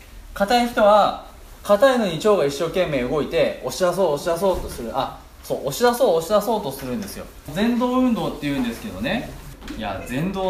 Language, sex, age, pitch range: Japanese, male, 20-39, 145-215 Hz